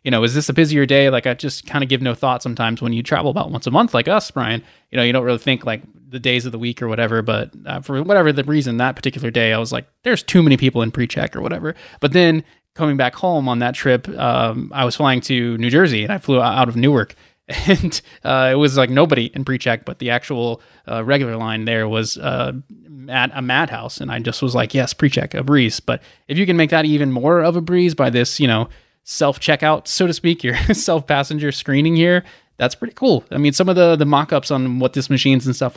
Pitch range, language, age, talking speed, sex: 120-155 Hz, English, 20-39, 250 wpm, male